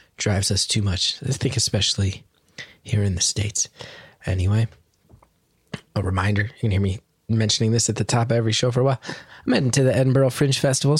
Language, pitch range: English, 115-140 Hz